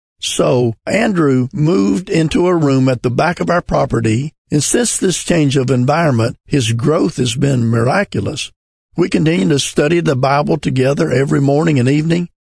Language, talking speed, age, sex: English, 165 wpm, 50-69, male